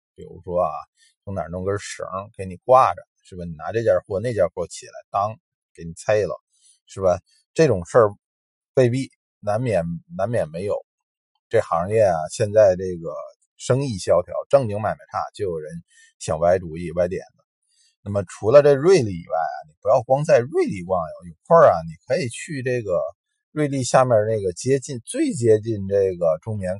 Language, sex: Chinese, male